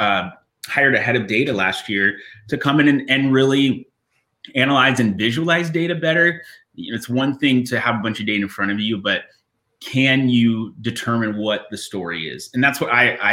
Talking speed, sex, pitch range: 205 wpm, male, 100-130 Hz